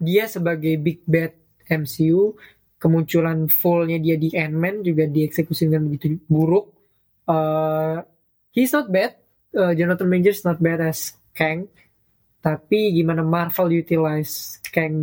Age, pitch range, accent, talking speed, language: 20-39, 150-175 Hz, native, 125 wpm, Indonesian